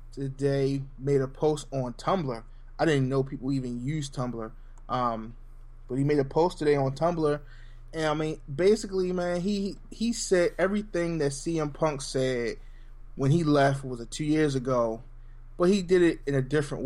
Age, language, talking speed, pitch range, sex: 20-39, English, 180 wpm, 125-150 Hz, male